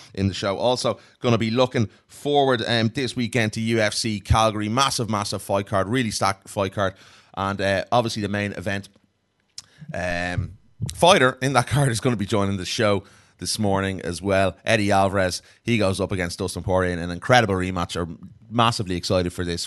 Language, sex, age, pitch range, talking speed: English, male, 30-49, 90-115 Hz, 185 wpm